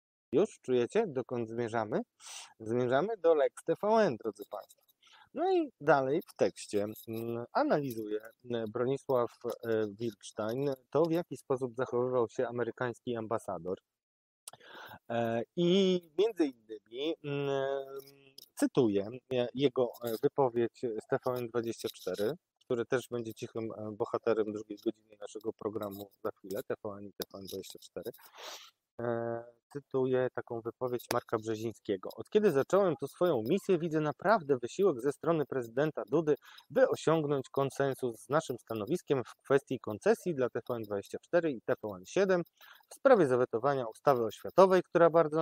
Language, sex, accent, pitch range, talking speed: Polish, male, native, 115-165 Hz, 115 wpm